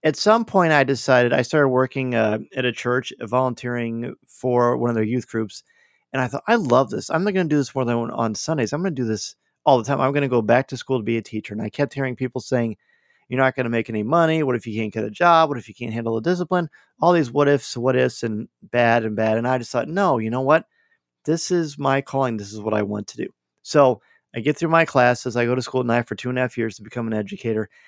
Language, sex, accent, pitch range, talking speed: English, male, American, 115-135 Hz, 285 wpm